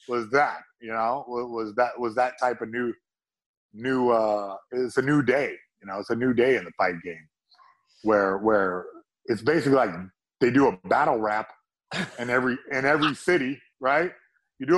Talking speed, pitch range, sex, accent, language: 185 wpm, 125-175 Hz, male, American, English